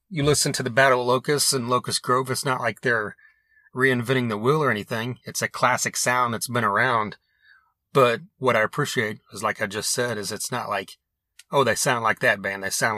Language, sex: English, male